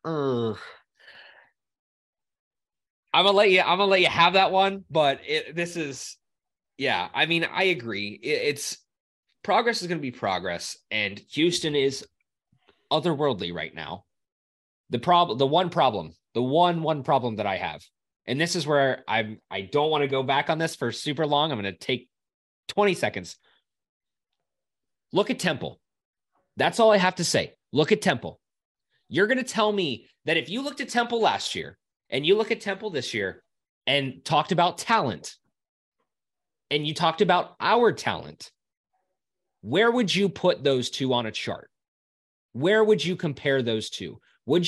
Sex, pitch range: male, 125-185 Hz